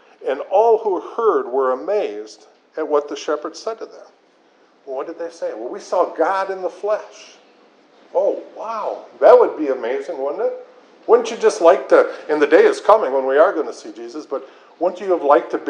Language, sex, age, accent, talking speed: English, male, 50-69, American, 220 wpm